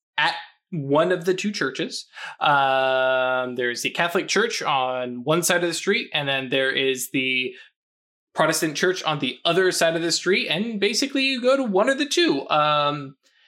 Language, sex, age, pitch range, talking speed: English, male, 20-39, 145-195 Hz, 185 wpm